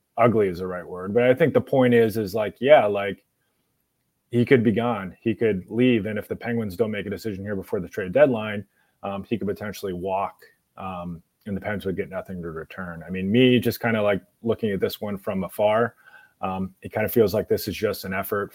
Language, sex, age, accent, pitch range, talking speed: English, male, 30-49, American, 95-115 Hz, 235 wpm